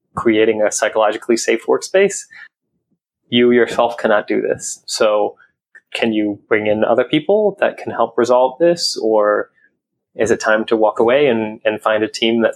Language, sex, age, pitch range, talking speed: English, male, 20-39, 110-140 Hz, 165 wpm